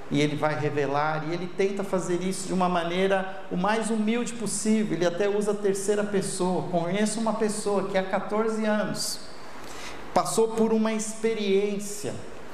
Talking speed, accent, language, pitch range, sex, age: 160 wpm, Brazilian, Portuguese, 180-235 Hz, male, 50-69